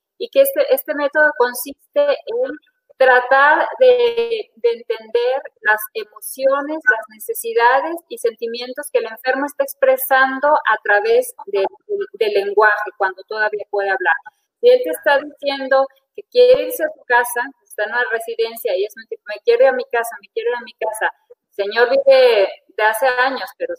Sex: female